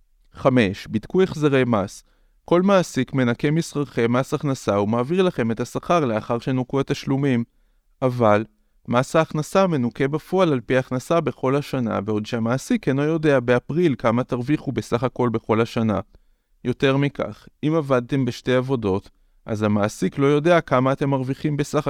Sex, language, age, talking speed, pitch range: male, Hebrew, 30-49, 140 wpm, 115-145 Hz